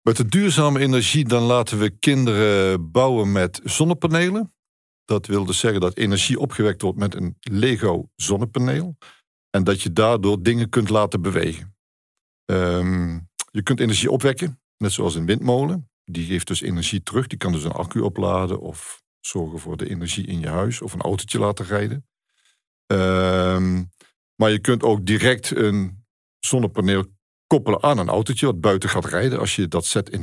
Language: Dutch